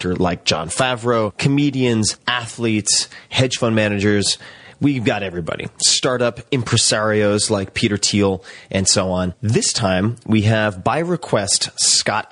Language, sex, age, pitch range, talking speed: English, male, 30-49, 100-120 Hz, 125 wpm